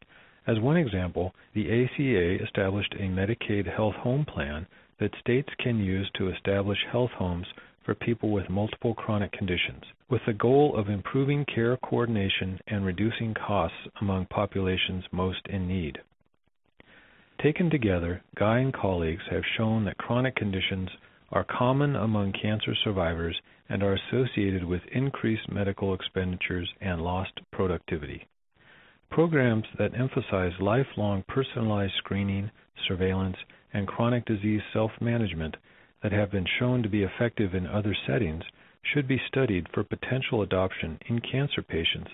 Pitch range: 95-120 Hz